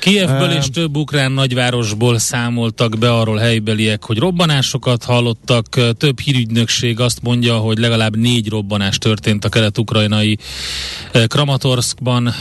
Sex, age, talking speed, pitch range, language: male, 30-49, 115 wpm, 110-130 Hz, Hungarian